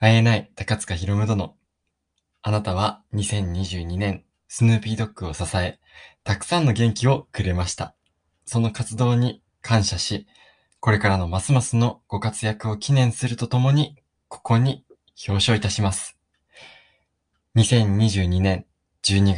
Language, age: Japanese, 20-39